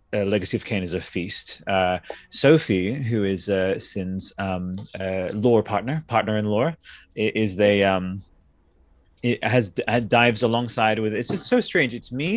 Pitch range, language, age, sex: 100-130 Hz, English, 20-39, male